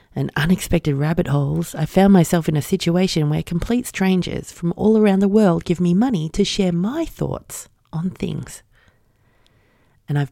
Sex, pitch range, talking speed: female, 135-180 Hz, 170 wpm